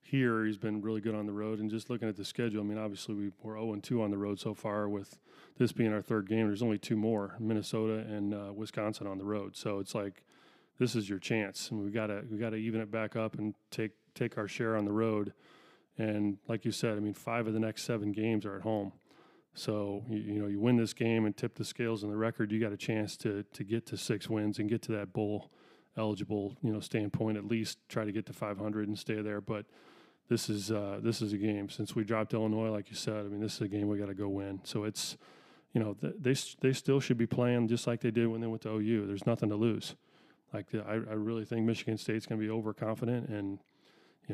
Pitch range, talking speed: 105-115 Hz, 260 wpm